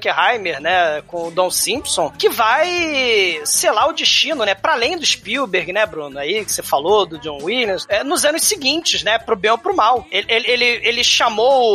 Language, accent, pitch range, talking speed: Portuguese, Brazilian, 210-280 Hz, 210 wpm